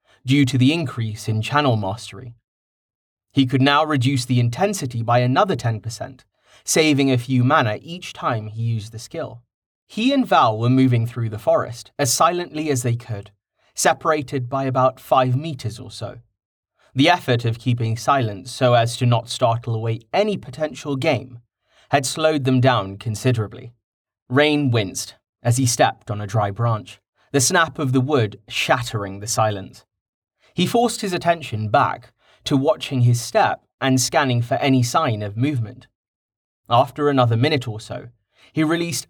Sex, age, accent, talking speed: male, 30-49, British, 160 wpm